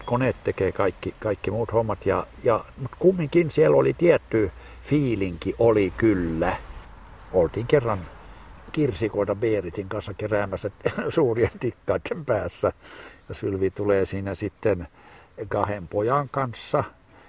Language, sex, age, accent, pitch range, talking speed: Finnish, male, 60-79, native, 90-120 Hz, 115 wpm